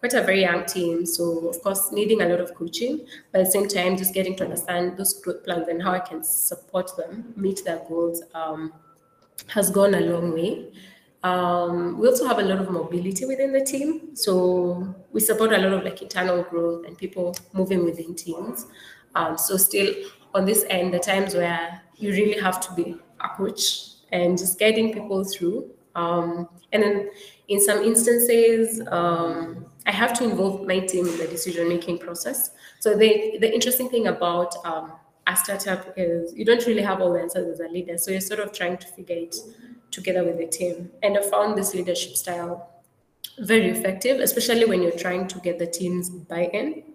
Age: 20-39